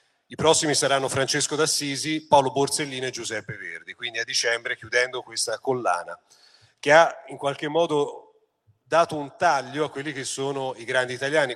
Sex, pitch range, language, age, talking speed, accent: male, 110-140 Hz, Italian, 40-59, 160 wpm, native